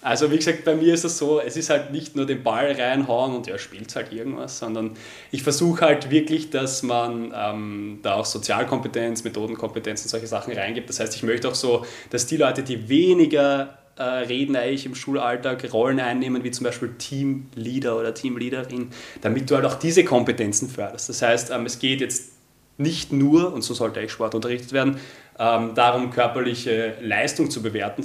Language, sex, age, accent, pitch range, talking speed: German, male, 20-39, German, 115-135 Hz, 190 wpm